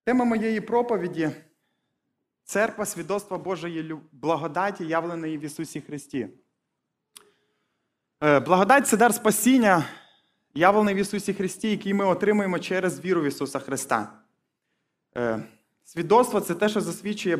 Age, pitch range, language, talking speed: 20-39, 155-200 Hz, Ukrainian, 120 wpm